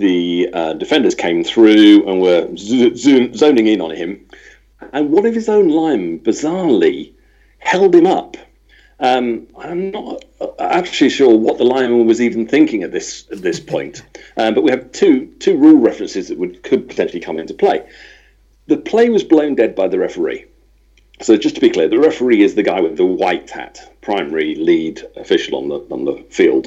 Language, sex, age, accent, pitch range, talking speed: English, male, 40-59, British, 275-390 Hz, 190 wpm